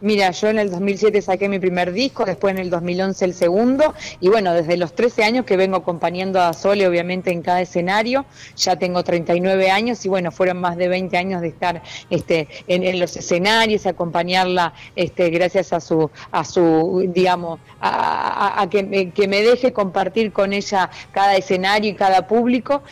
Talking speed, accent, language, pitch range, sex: 190 wpm, Argentinian, Spanish, 175-205 Hz, female